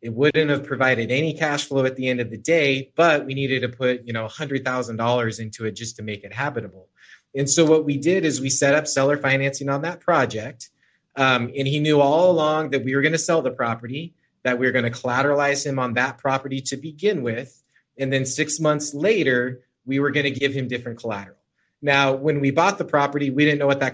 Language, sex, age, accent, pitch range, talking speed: English, male, 30-49, American, 120-145 Hz, 235 wpm